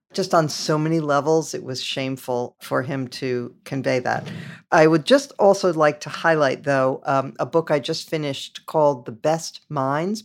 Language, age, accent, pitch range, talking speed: English, 50-69, American, 140-170 Hz, 180 wpm